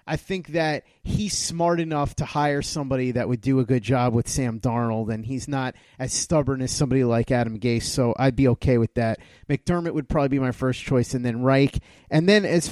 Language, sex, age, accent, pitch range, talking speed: English, male, 30-49, American, 130-165 Hz, 220 wpm